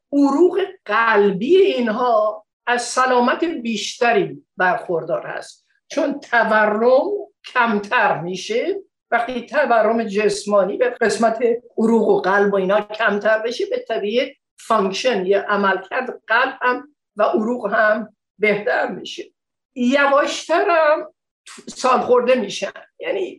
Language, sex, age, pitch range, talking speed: Persian, female, 50-69, 205-285 Hz, 105 wpm